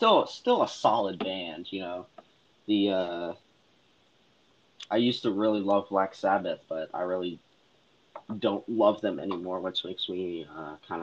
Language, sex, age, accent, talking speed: English, male, 20-39, American, 150 wpm